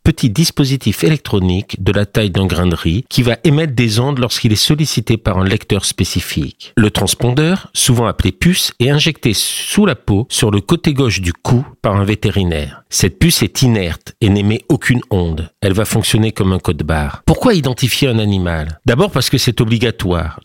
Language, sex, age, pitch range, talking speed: French, male, 50-69, 100-135 Hz, 190 wpm